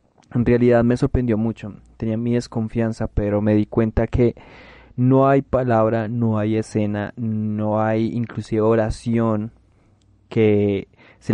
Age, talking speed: 20-39, 130 wpm